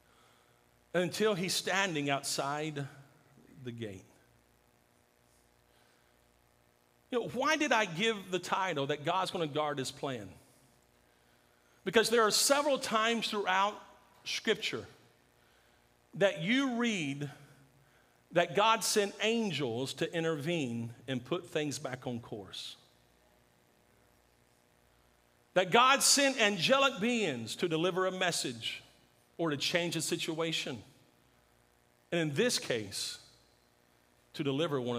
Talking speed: 105 wpm